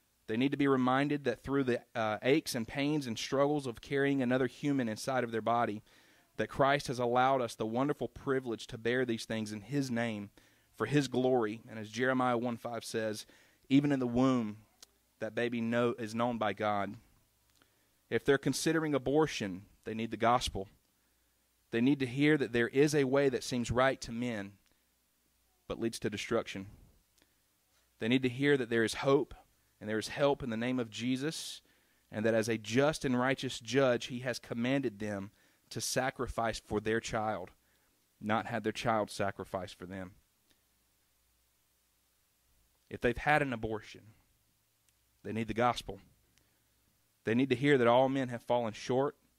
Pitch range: 105-130 Hz